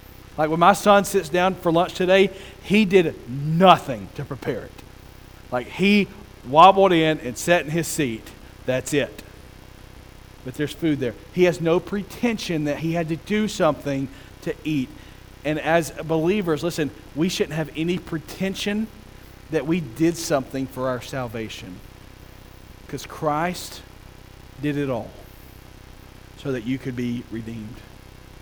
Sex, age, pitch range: male, 40-59, 115-160 Hz